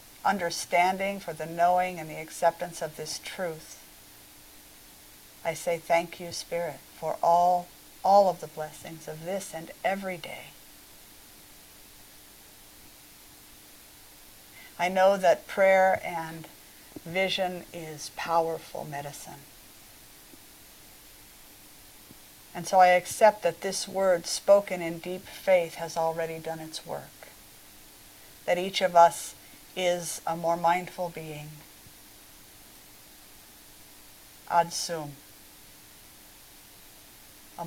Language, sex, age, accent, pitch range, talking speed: English, female, 50-69, American, 155-175 Hz, 100 wpm